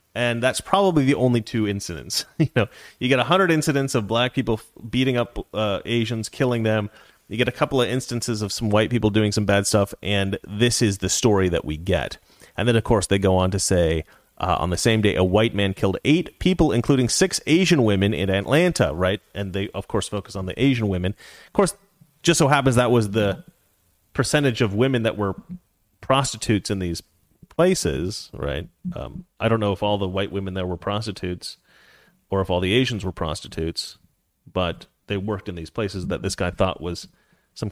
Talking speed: 205 wpm